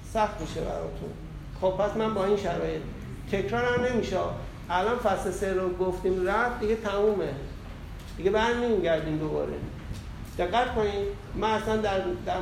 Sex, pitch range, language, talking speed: male, 170-220 Hz, Persian, 145 wpm